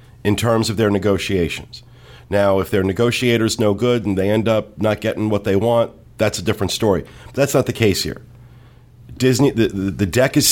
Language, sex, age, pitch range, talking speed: English, male, 40-59, 95-120 Hz, 200 wpm